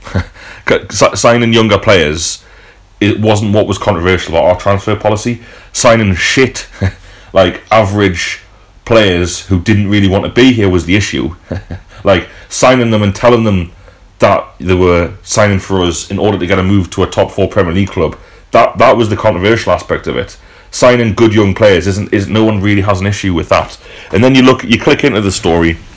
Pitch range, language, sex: 90-105 Hz, English, male